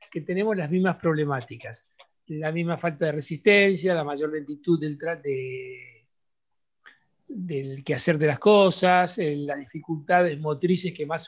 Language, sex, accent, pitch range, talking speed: Spanish, male, Argentinian, 155-200 Hz, 140 wpm